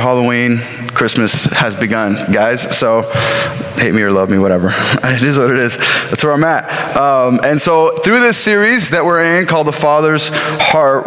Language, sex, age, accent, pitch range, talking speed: English, male, 20-39, American, 130-160 Hz, 185 wpm